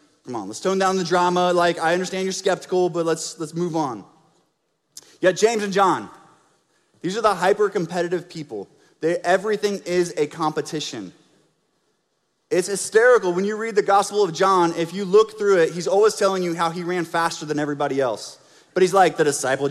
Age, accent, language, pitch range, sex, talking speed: 20-39, American, English, 165-225 Hz, male, 190 wpm